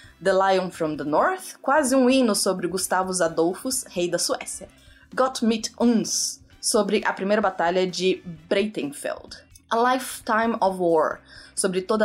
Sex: female